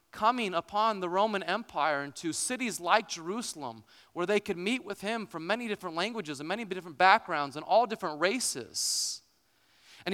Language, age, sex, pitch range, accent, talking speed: English, 30-49, male, 145-205 Hz, American, 165 wpm